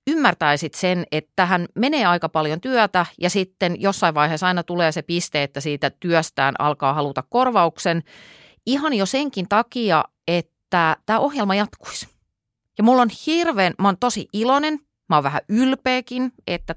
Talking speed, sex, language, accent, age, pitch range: 155 wpm, female, Finnish, native, 30-49, 145-205 Hz